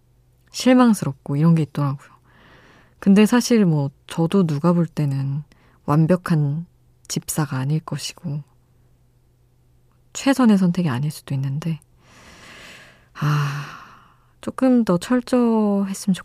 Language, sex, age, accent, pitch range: Korean, female, 20-39, native, 125-175 Hz